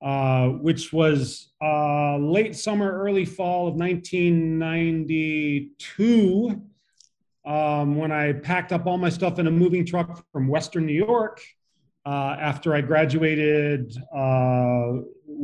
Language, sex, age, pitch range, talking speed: English, male, 40-59, 145-175 Hz, 120 wpm